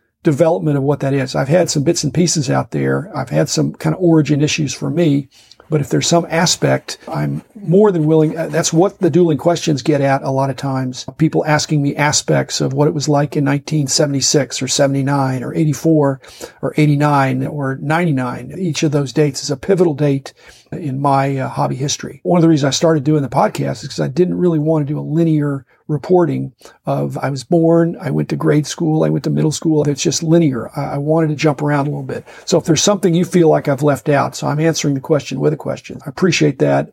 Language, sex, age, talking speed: English, male, 50-69, 230 wpm